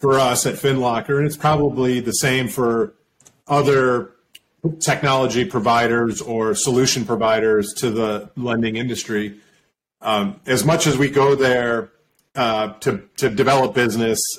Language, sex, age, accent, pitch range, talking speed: English, male, 40-59, American, 110-135 Hz, 135 wpm